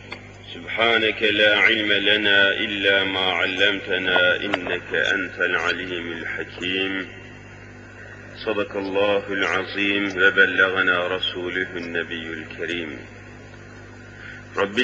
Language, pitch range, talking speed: Turkish, 95-115 Hz, 75 wpm